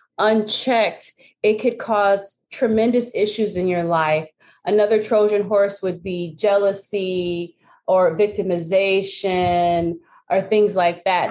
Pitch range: 180-225 Hz